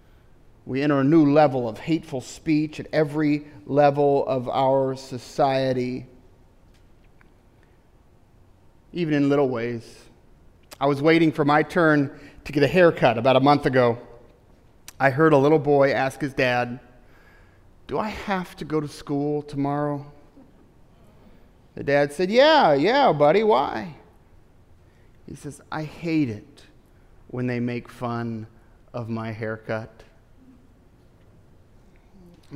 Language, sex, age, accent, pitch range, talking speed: English, male, 30-49, American, 130-175 Hz, 125 wpm